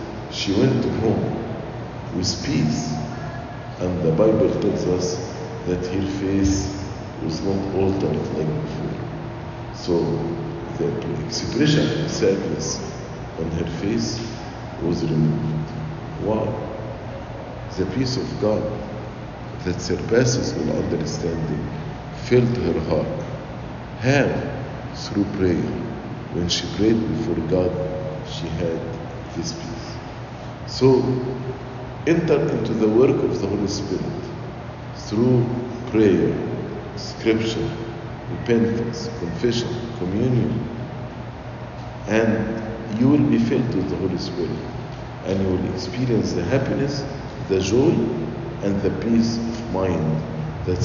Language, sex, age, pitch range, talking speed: English, male, 50-69, 95-125 Hz, 105 wpm